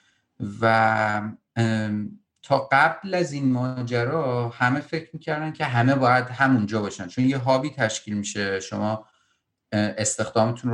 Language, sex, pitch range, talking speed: Persian, male, 100-125 Hz, 115 wpm